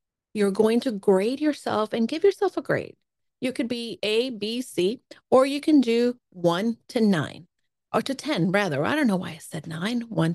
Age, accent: 40-59, American